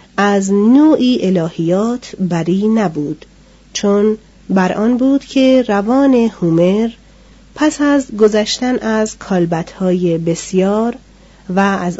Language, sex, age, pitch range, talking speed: Persian, female, 40-59, 180-230 Hz, 100 wpm